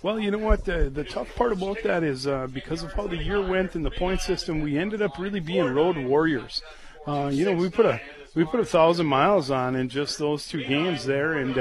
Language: English